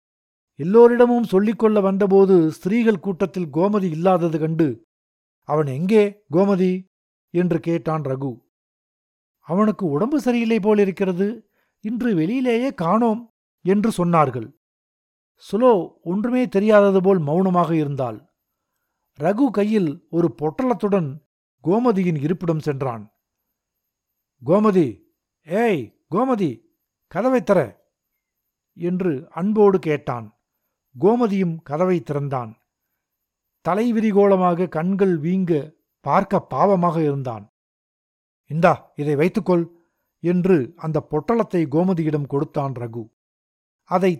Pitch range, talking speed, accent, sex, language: 145-205 Hz, 85 wpm, native, male, Tamil